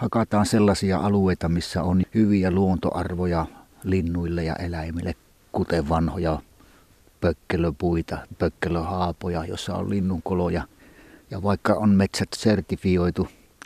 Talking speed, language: 95 wpm, Finnish